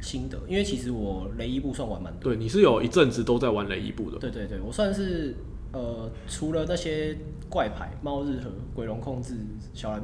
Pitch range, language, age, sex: 100-125 Hz, Chinese, 20-39, male